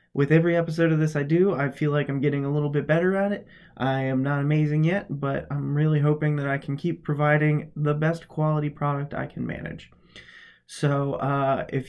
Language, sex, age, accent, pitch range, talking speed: English, male, 20-39, American, 140-165 Hz, 210 wpm